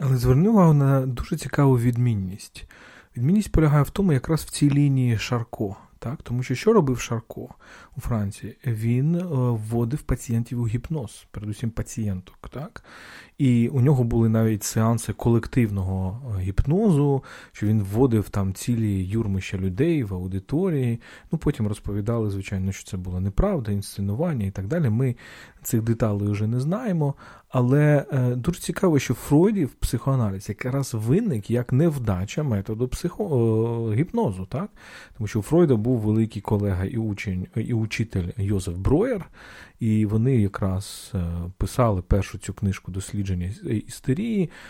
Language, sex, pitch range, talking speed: Ukrainian, male, 105-140 Hz, 140 wpm